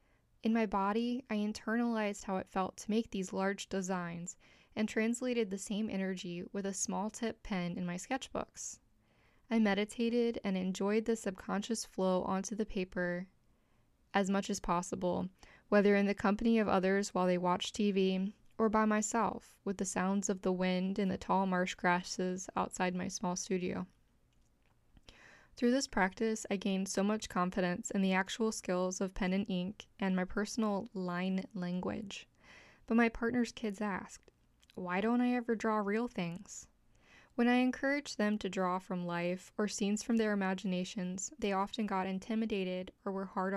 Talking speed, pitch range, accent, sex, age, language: 165 wpm, 185-220 Hz, American, female, 10-29, English